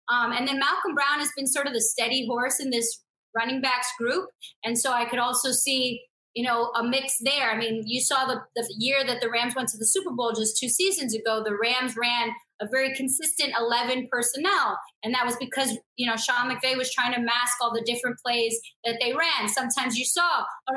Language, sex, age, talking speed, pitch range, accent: English, female, 20-39, 225 wpm, 235-275 Hz, American